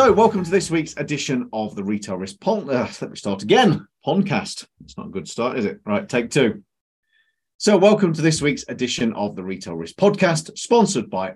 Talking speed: 210 wpm